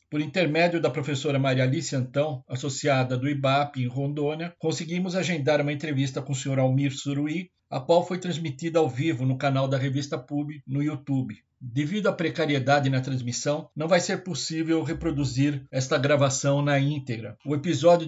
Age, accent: 60-79, Brazilian